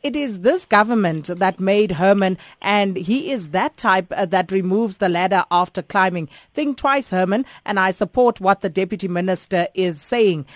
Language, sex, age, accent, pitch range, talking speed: English, female, 30-49, South African, 185-230 Hz, 170 wpm